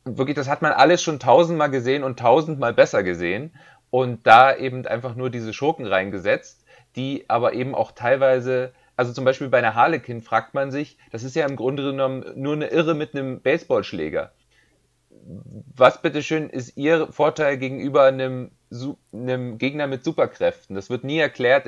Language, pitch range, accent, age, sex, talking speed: German, 120-145 Hz, German, 30-49, male, 170 wpm